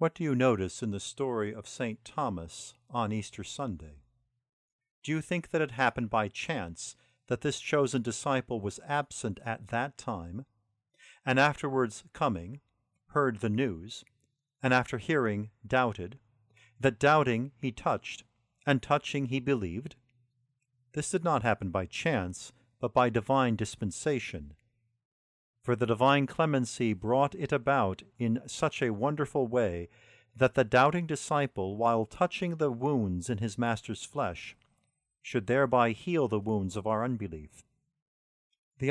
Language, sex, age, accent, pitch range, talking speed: English, male, 50-69, American, 105-135 Hz, 140 wpm